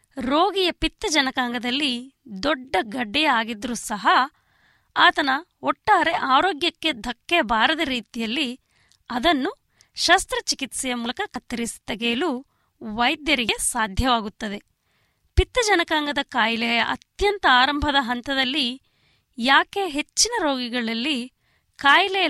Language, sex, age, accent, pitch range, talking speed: Kannada, female, 20-39, native, 245-330 Hz, 75 wpm